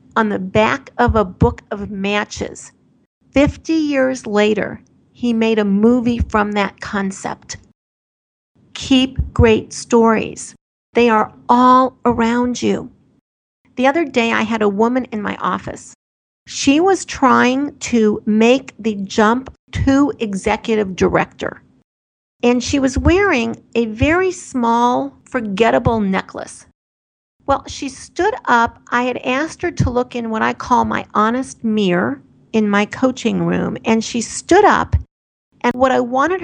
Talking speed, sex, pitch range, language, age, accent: 140 wpm, female, 220-265 Hz, English, 50-69, American